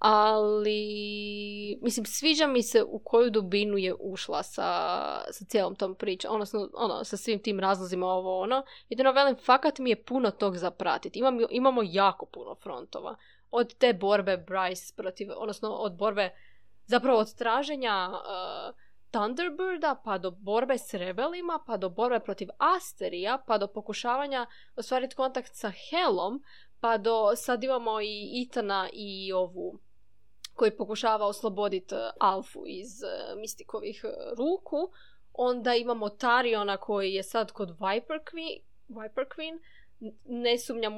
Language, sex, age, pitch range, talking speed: Croatian, female, 20-39, 205-265 Hz, 140 wpm